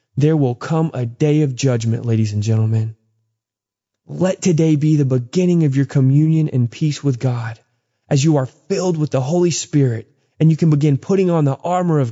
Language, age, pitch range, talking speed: English, 20-39, 125-165 Hz, 195 wpm